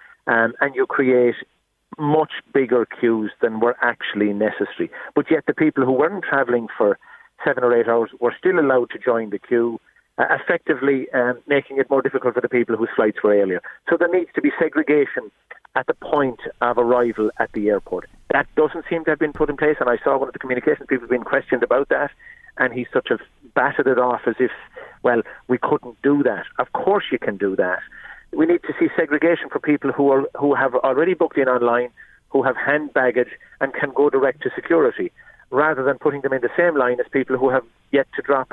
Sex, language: male, English